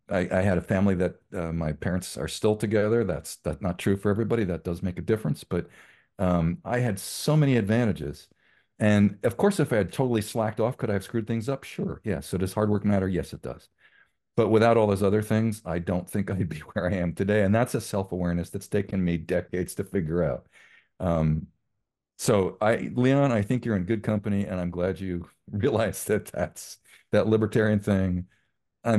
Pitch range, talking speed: 85-105 Hz, 210 wpm